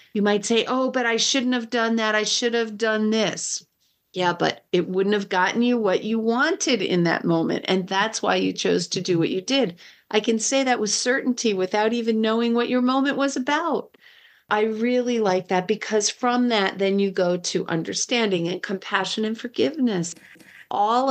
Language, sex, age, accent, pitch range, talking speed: English, female, 40-59, American, 180-240 Hz, 195 wpm